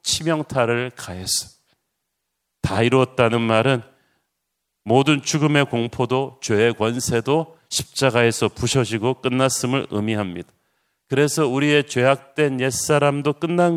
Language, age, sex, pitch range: Korean, 40-59, male, 110-135 Hz